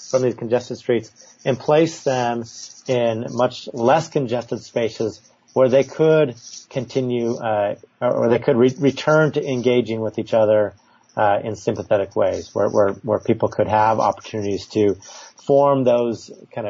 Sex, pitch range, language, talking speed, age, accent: male, 105-125 Hz, English, 150 wpm, 30-49, American